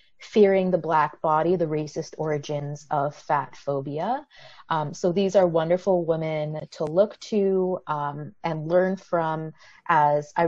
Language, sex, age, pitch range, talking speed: English, female, 30-49, 155-190 Hz, 145 wpm